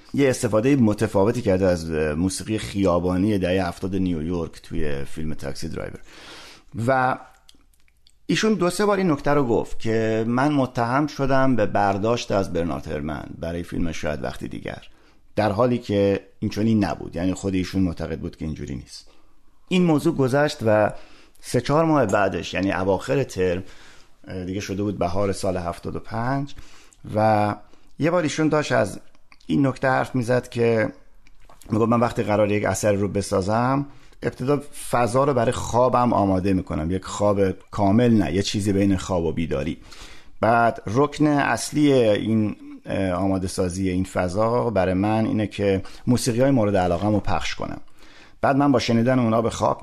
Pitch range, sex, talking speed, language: 95-125 Hz, male, 155 wpm, Persian